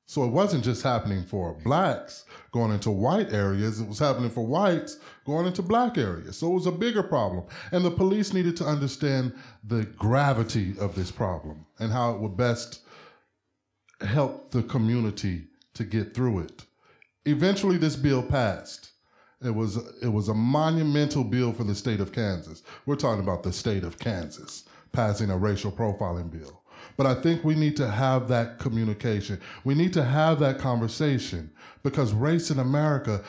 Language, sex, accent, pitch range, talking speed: English, male, American, 110-140 Hz, 170 wpm